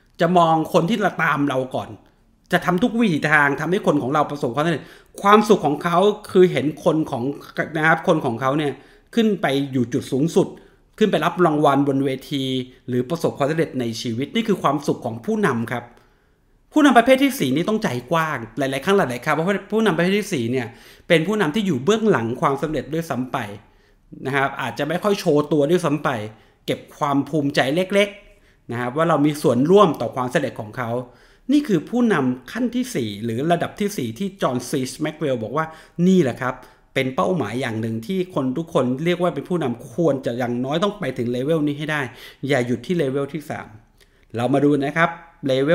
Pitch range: 130-180 Hz